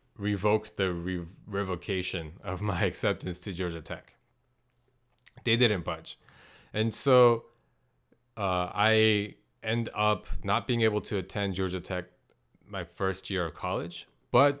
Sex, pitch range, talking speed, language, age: male, 90-120 Hz, 125 wpm, English, 30-49